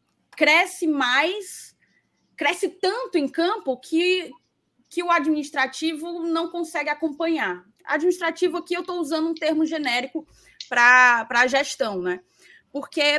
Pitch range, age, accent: 235-320 Hz, 20-39, Brazilian